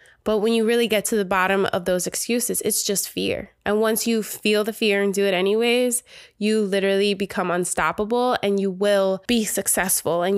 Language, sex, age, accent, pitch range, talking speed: English, female, 20-39, American, 185-220 Hz, 195 wpm